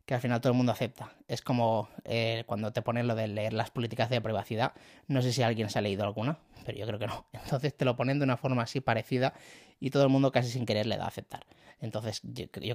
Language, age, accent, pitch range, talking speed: Spanish, 20-39, Spanish, 110-130 Hz, 260 wpm